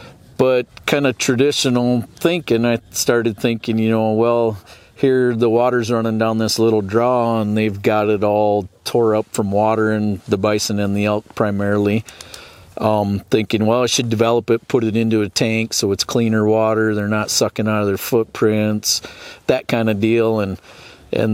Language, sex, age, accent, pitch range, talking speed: English, male, 40-59, American, 105-120 Hz, 180 wpm